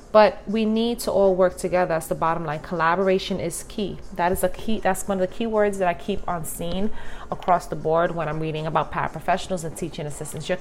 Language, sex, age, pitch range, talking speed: English, female, 30-49, 170-215 Hz, 230 wpm